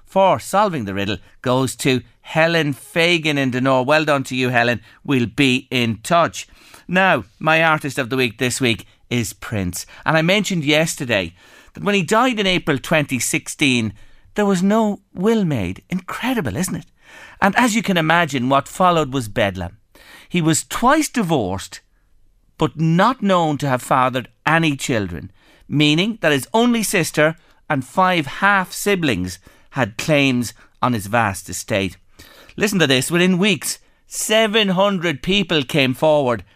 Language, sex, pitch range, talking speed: English, male, 120-190 Hz, 155 wpm